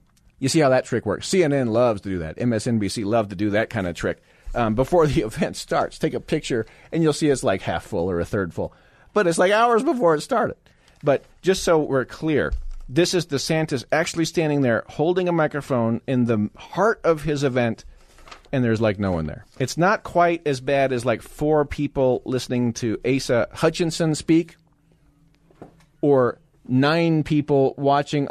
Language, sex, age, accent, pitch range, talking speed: English, male, 40-59, American, 110-155 Hz, 190 wpm